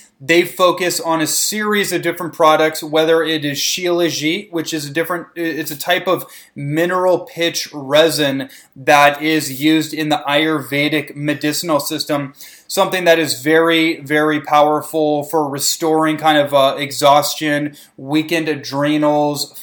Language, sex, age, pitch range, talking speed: English, male, 20-39, 145-165 Hz, 140 wpm